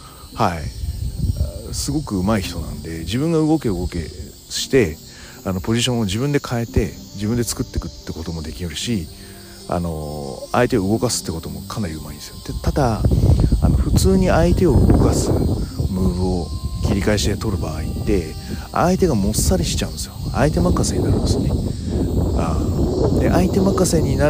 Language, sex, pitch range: Japanese, male, 85-110 Hz